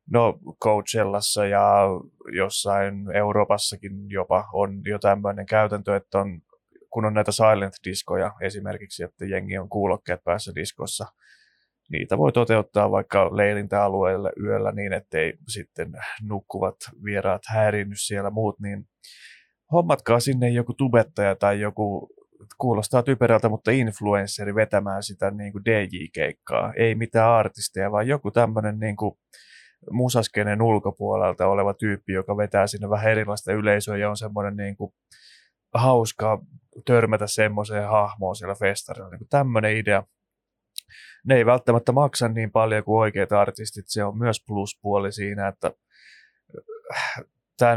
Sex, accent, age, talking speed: male, native, 20-39, 125 wpm